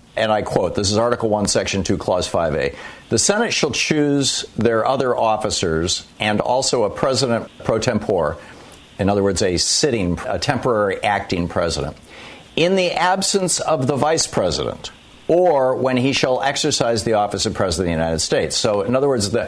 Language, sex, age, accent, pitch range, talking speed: English, male, 60-79, American, 100-135 Hz, 175 wpm